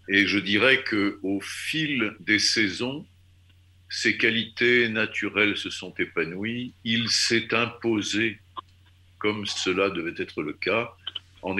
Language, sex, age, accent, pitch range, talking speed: French, male, 50-69, French, 90-115 Hz, 120 wpm